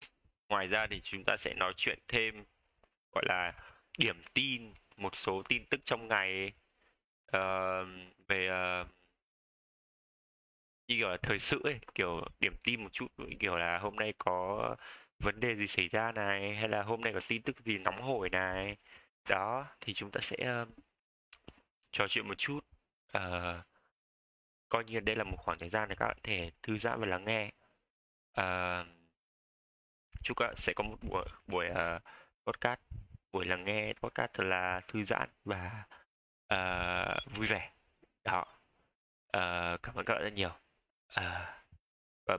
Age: 20-39